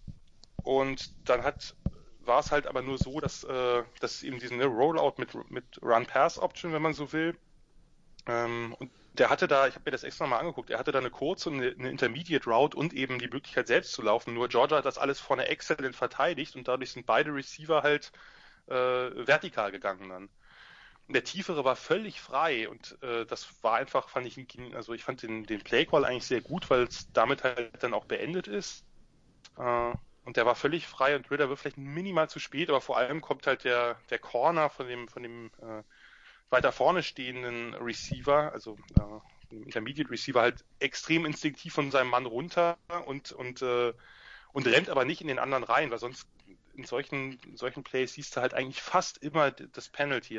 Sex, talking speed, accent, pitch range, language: male, 195 wpm, German, 120-145 Hz, English